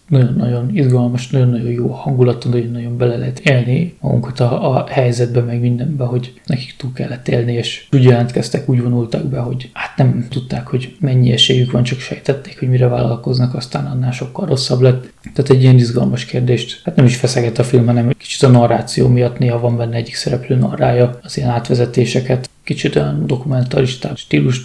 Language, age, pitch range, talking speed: Hungarian, 20-39, 120-140 Hz, 180 wpm